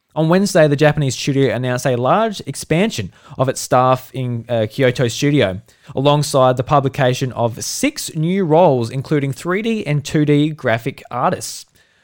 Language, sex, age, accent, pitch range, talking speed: English, male, 20-39, Australian, 130-165 Hz, 145 wpm